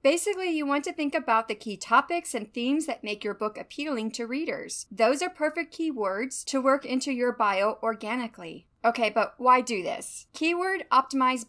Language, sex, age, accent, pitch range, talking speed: English, female, 30-49, American, 220-295 Hz, 180 wpm